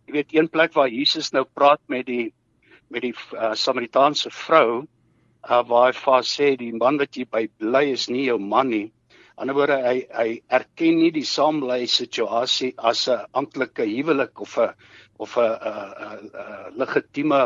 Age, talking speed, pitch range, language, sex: 60-79, 170 wpm, 125-160 Hz, English, male